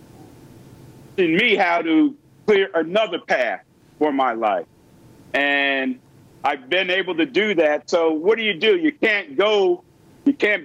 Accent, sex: American, male